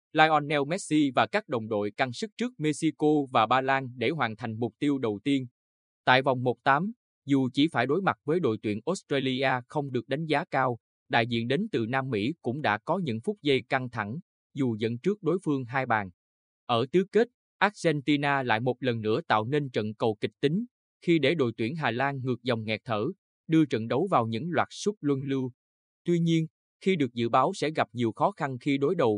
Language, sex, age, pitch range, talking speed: Vietnamese, male, 20-39, 115-150 Hz, 215 wpm